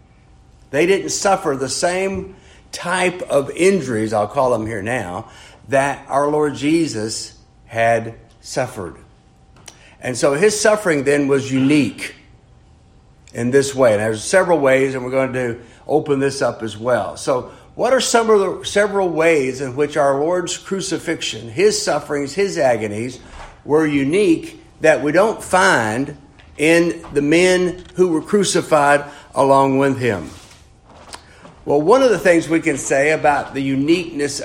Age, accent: 60-79, American